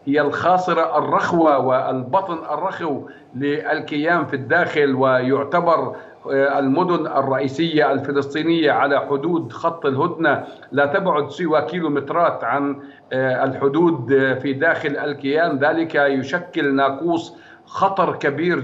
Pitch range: 140-160 Hz